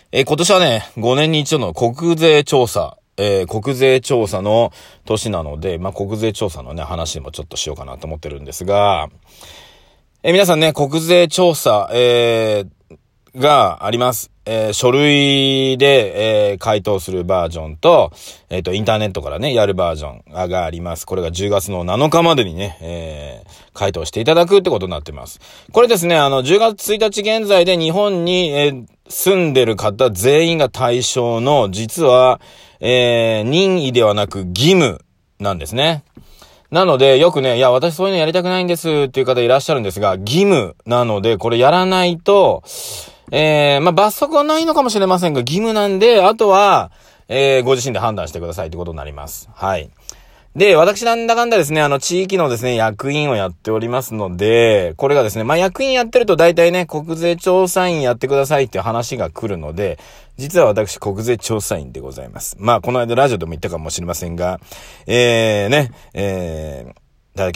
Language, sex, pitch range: Japanese, male, 100-165 Hz